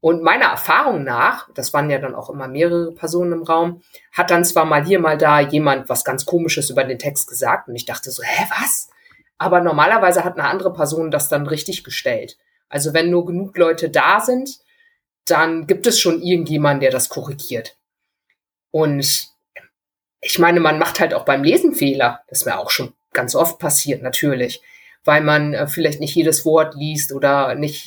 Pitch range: 140-170 Hz